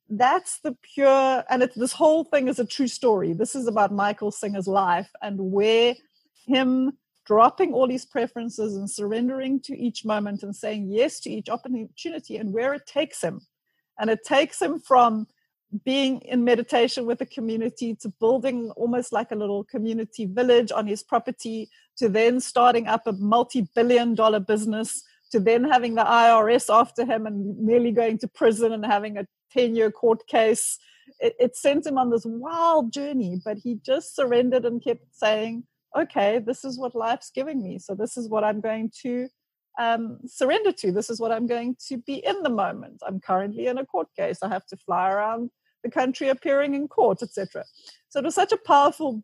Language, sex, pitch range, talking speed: English, female, 215-260 Hz, 190 wpm